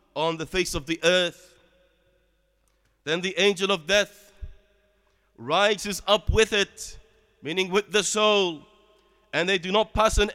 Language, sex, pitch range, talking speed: English, male, 180-215 Hz, 145 wpm